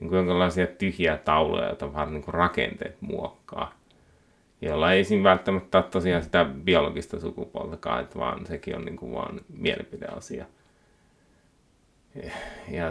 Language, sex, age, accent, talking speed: Finnish, male, 30-49, native, 110 wpm